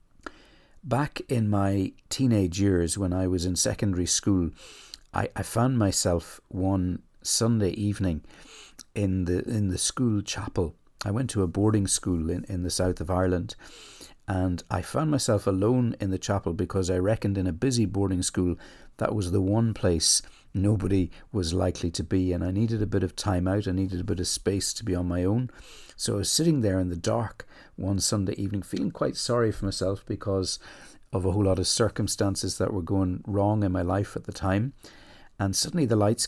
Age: 60-79